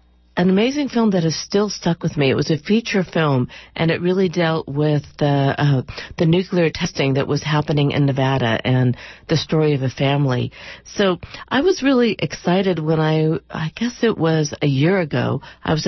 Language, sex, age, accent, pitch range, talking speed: English, female, 50-69, American, 140-175 Hz, 195 wpm